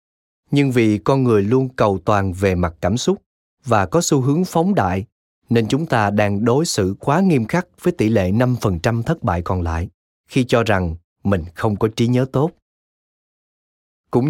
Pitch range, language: 95-140 Hz, Vietnamese